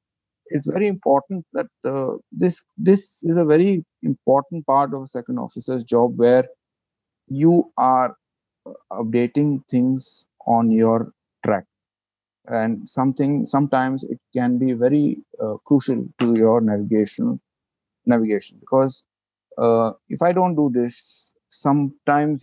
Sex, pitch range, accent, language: male, 120-145 Hz, Indian, English